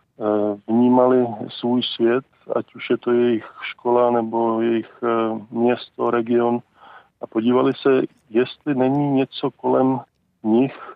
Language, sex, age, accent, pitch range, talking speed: Czech, male, 40-59, native, 115-125 Hz, 115 wpm